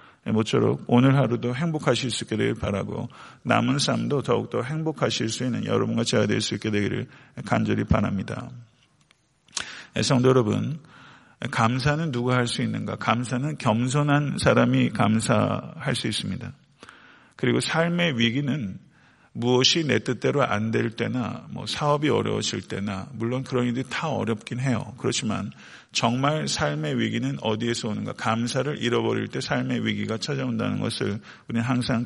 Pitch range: 115-140 Hz